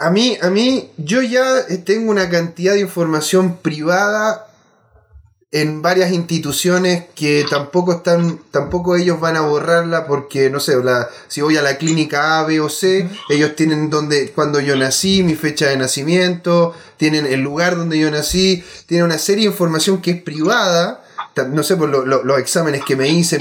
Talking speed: 180 wpm